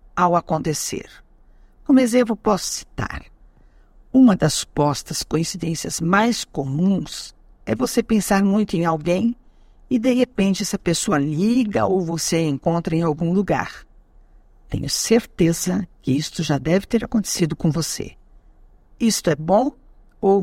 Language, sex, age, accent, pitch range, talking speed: Portuguese, female, 60-79, Brazilian, 160-220 Hz, 130 wpm